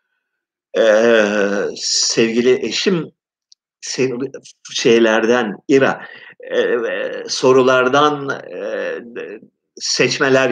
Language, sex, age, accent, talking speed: Turkish, male, 50-69, native, 55 wpm